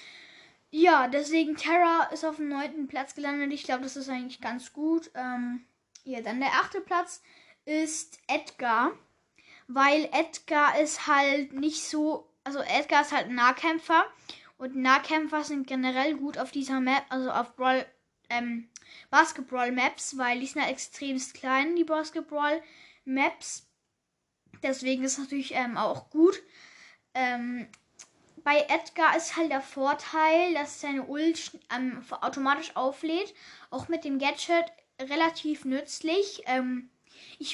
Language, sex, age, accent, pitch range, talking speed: German, female, 10-29, German, 255-315 Hz, 135 wpm